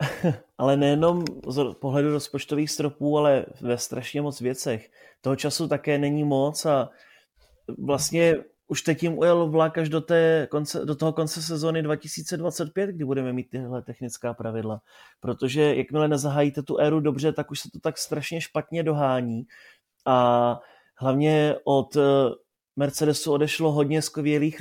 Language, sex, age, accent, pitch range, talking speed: Czech, male, 30-49, native, 130-155 Hz, 145 wpm